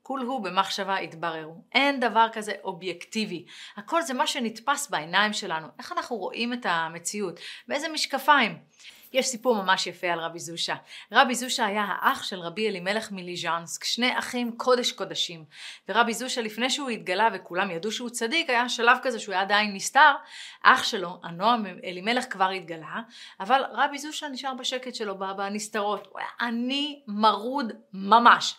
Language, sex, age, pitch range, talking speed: Hebrew, female, 30-49, 195-260 Hz, 150 wpm